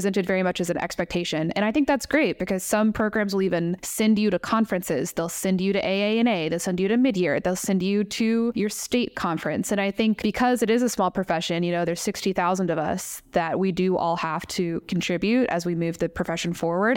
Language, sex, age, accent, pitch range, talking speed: English, female, 20-39, American, 180-220 Hz, 230 wpm